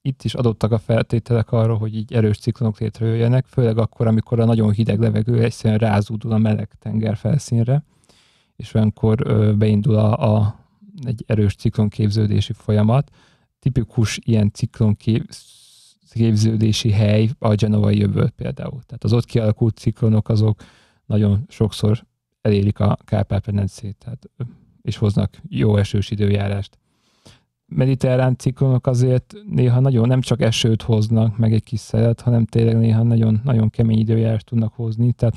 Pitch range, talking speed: 110-120 Hz, 130 wpm